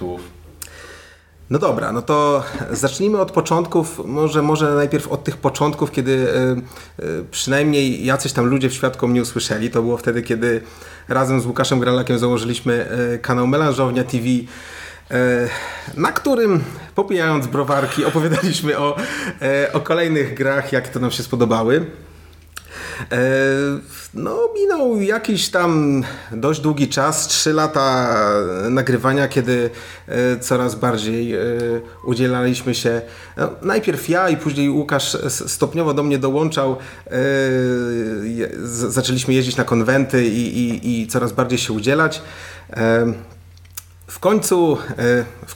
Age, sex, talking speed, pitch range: 30-49, male, 110 wpm, 120-145 Hz